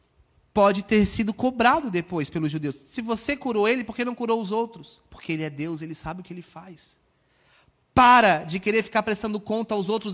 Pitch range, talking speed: 185-235 Hz, 205 wpm